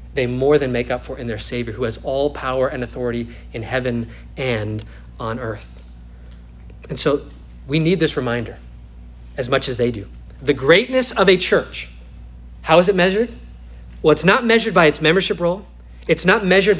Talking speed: 180 wpm